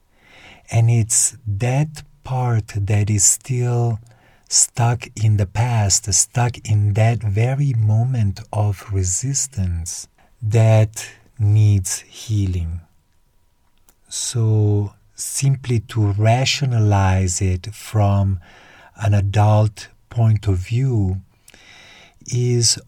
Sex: male